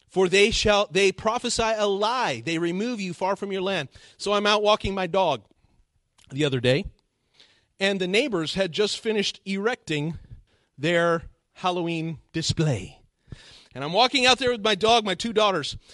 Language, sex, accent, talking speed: English, male, American, 165 wpm